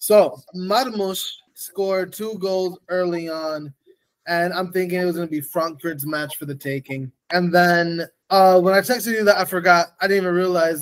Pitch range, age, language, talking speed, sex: 155-195 Hz, 20-39, English, 190 wpm, male